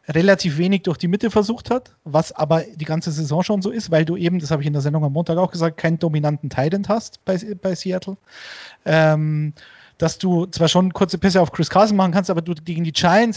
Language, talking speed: German, 235 wpm